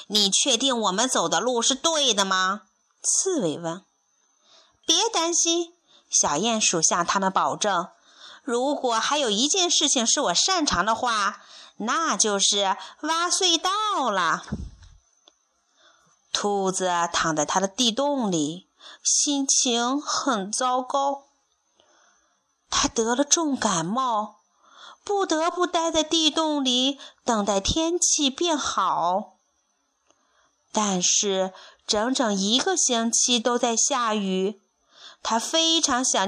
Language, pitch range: Chinese, 215-325 Hz